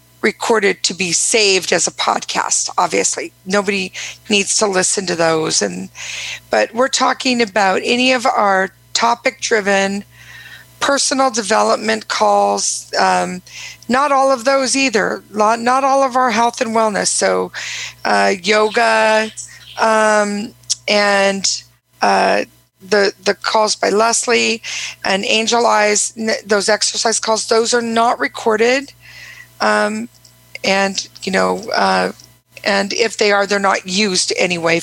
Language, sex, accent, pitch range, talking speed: English, female, American, 180-235 Hz, 130 wpm